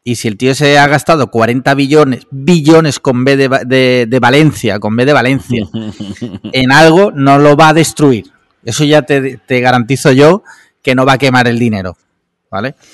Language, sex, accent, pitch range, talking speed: Spanish, male, Spanish, 110-140 Hz, 185 wpm